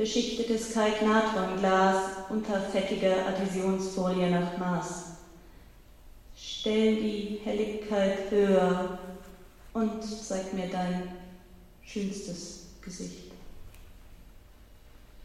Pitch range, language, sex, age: 185-215 Hz, German, female, 30-49